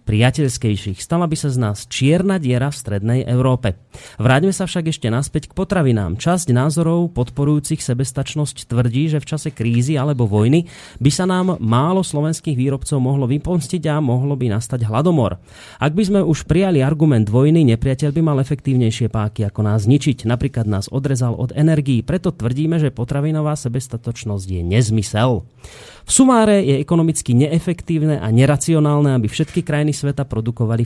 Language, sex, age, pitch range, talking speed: Slovak, male, 30-49, 115-150 Hz, 160 wpm